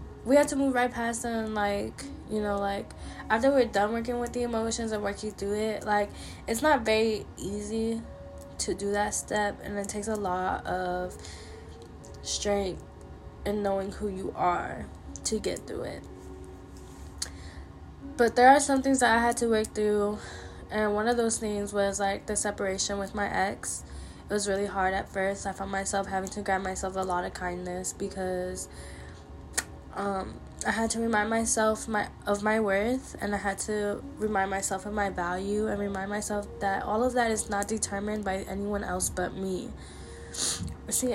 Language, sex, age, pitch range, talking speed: English, female, 10-29, 180-215 Hz, 180 wpm